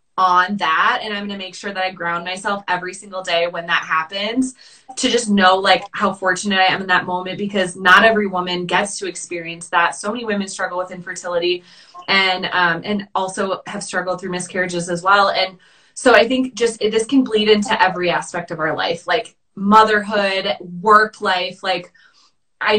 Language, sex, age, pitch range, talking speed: English, female, 20-39, 180-215 Hz, 195 wpm